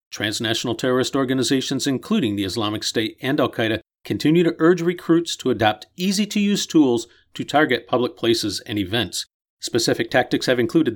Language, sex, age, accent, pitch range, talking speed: English, male, 50-69, American, 120-160 Hz, 150 wpm